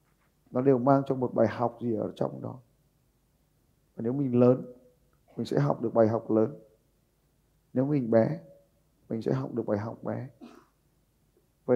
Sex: male